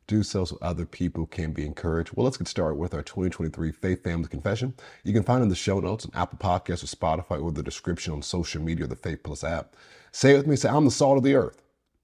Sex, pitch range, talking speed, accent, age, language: male, 80-100 Hz, 265 wpm, American, 50-69, English